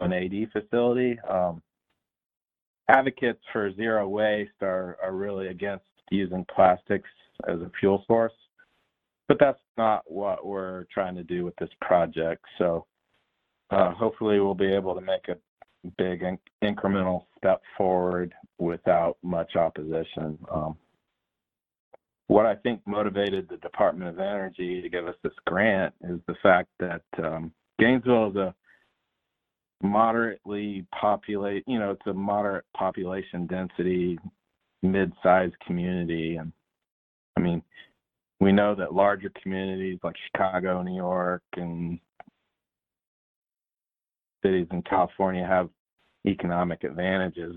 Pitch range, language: 90-100 Hz, English